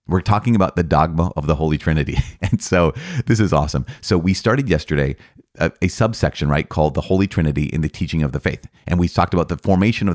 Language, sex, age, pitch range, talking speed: English, male, 30-49, 80-105 Hz, 230 wpm